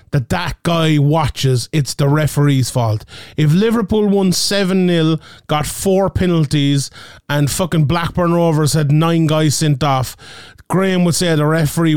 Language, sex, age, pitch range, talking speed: English, male, 30-49, 135-175 Hz, 145 wpm